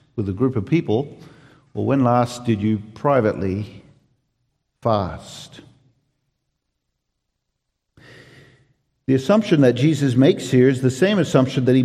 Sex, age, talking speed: male, 50-69, 120 wpm